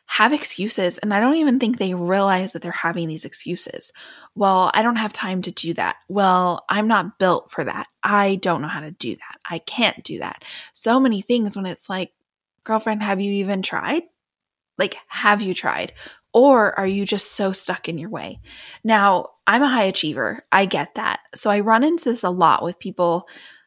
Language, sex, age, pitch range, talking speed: English, female, 20-39, 180-220 Hz, 205 wpm